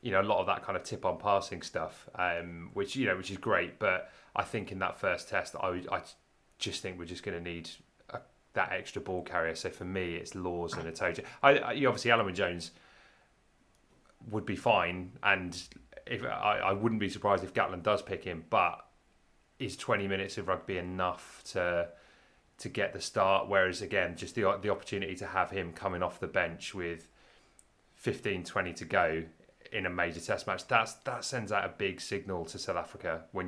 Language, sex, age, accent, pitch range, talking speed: English, male, 30-49, British, 90-110 Hz, 205 wpm